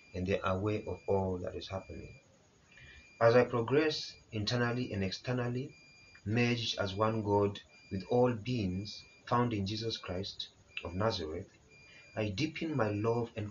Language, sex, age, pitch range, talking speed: English, male, 30-49, 100-125 Hz, 145 wpm